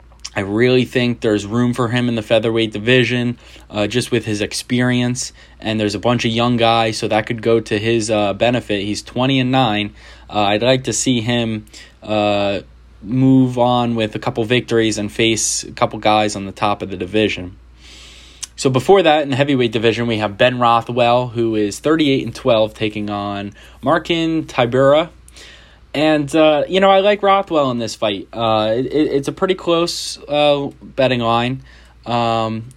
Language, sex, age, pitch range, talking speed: English, male, 20-39, 105-130 Hz, 175 wpm